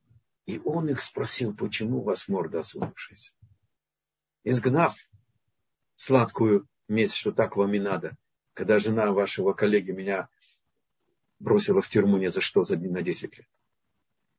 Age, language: 50-69, Russian